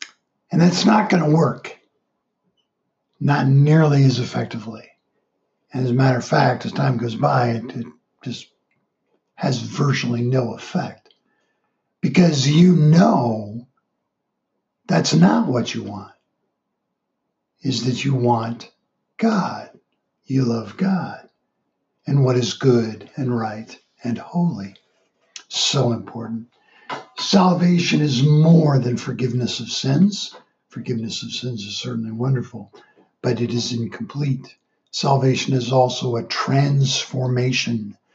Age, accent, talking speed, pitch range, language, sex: 60-79, American, 115 wpm, 120-140 Hz, English, male